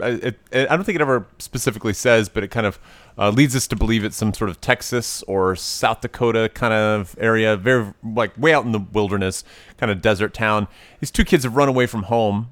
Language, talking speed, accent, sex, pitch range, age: English, 230 wpm, American, male, 95-120 Hz, 30-49